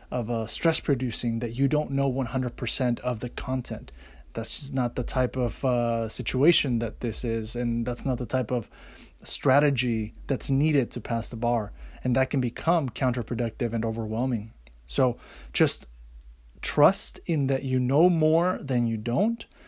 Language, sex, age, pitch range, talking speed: English, male, 30-49, 115-140 Hz, 165 wpm